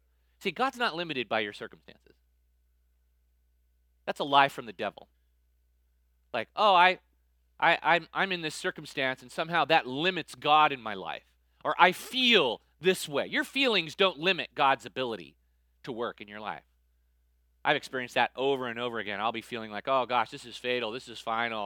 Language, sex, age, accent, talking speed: English, male, 30-49, American, 180 wpm